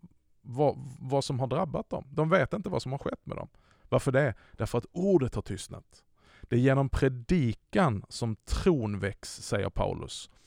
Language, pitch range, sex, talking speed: Swedish, 110-135 Hz, male, 180 wpm